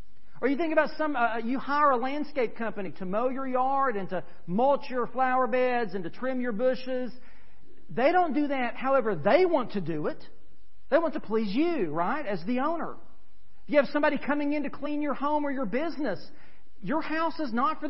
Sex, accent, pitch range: male, American, 195-270 Hz